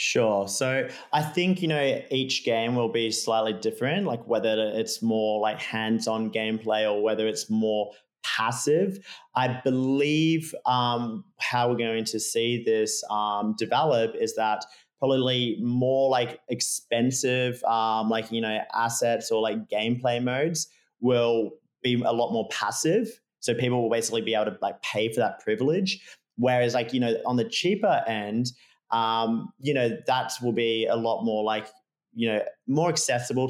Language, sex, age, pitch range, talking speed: English, male, 30-49, 110-125 Hz, 160 wpm